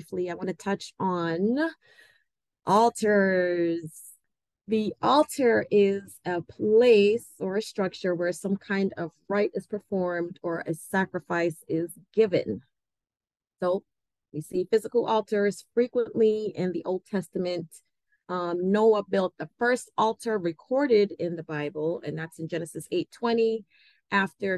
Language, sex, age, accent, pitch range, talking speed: English, female, 30-49, American, 165-200 Hz, 130 wpm